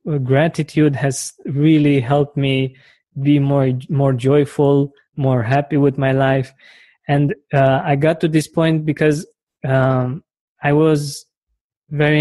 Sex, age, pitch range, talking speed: male, 20-39, 135-150 Hz, 130 wpm